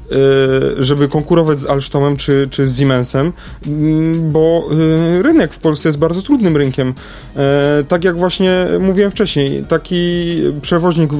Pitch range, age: 135-160 Hz, 30-49